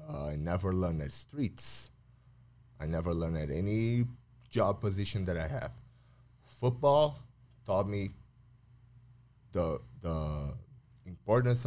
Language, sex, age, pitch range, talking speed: English, male, 30-49, 85-120 Hz, 110 wpm